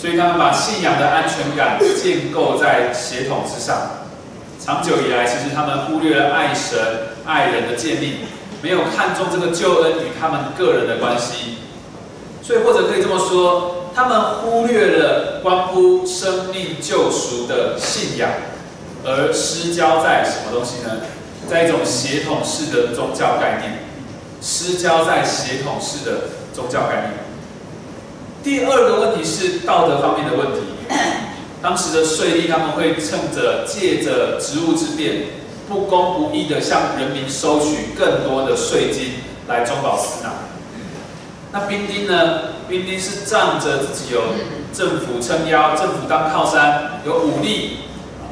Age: 30-49